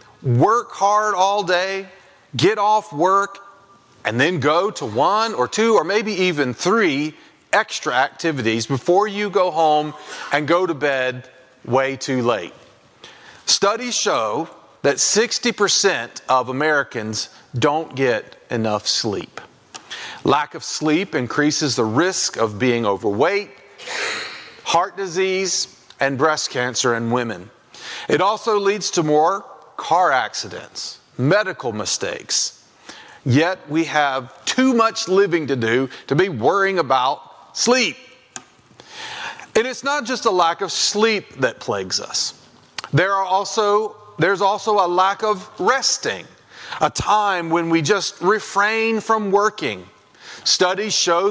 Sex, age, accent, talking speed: male, 40-59, American, 125 wpm